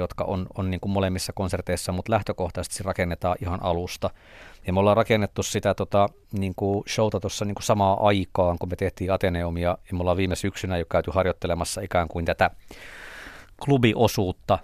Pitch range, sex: 90-105 Hz, male